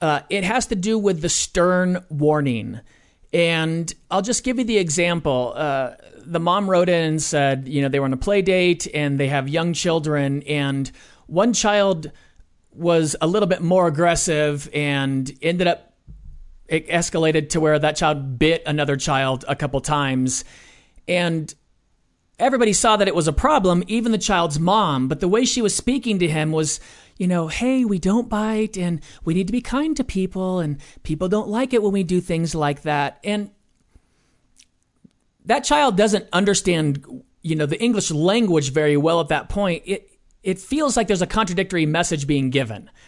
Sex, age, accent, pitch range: male, 40-59, American, 150-200 Hz